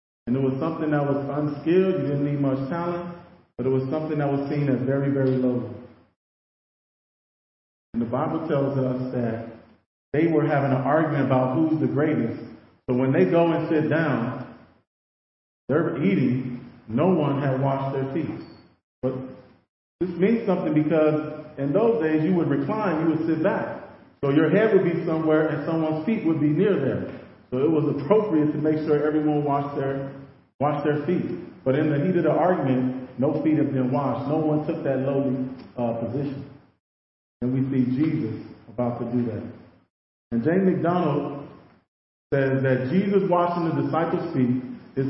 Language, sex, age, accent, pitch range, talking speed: English, male, 40-59, American, 130-160 Hz, 175 wpm